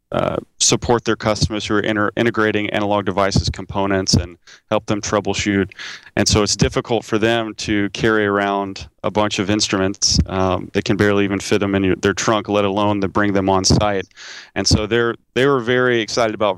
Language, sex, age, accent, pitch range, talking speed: English, male, 30-49, American, 100-115 Hz, 190 wpm